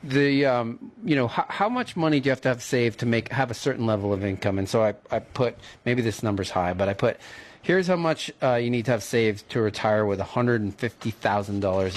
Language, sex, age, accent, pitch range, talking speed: English, male, 40-59, American, 105-130 Hz, 270 wpm